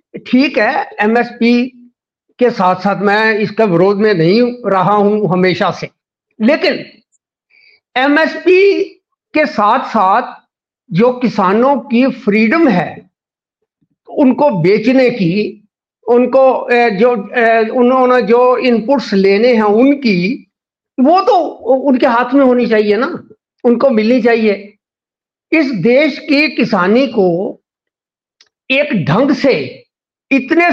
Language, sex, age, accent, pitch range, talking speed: Hindi, male, 50-69, native, 210-275 Hz, 110 wpm